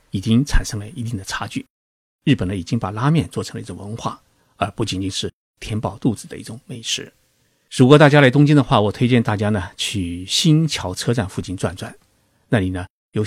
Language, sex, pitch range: Chinese, male, 95-125 Hz